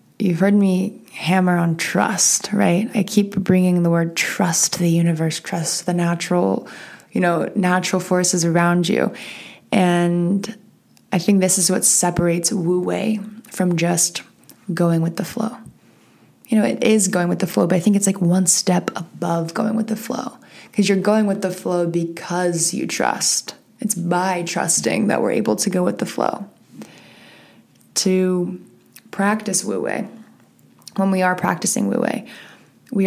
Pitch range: 175-215 Hz